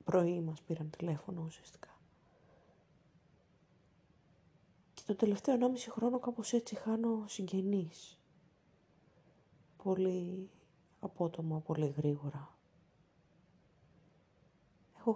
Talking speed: 75 wpm